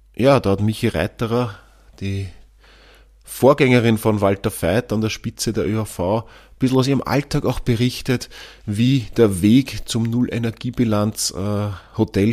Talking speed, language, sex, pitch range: 140 wpm, German, male, 95-120 Hz